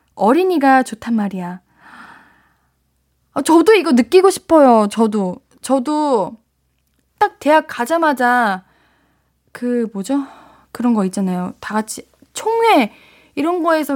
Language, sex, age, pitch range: Korean, female, 20-39, 220-295 Hz